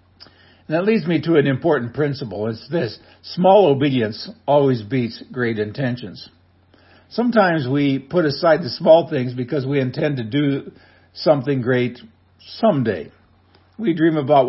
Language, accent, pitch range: English, American, 110-155 Hz